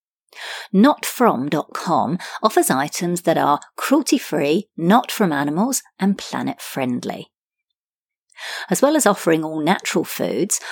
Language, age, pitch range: English, 50-69, 160-225 Hz